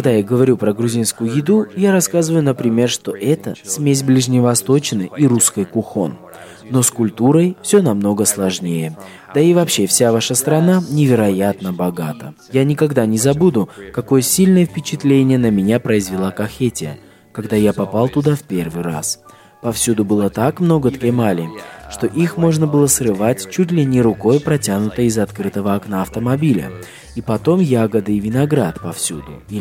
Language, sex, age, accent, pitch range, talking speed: Russian, male, 20-39, native, 100-140 Hz, 150 wpm